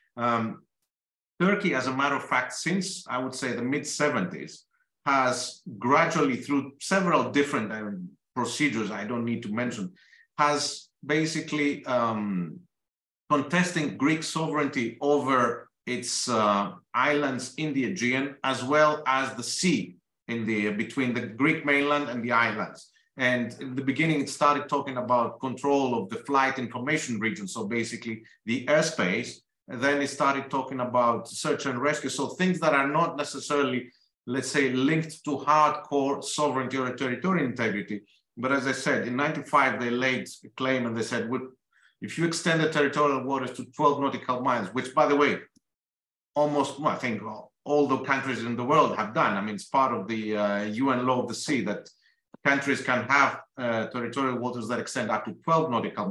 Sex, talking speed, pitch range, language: male, 170 wpm, 120-145 Hz, English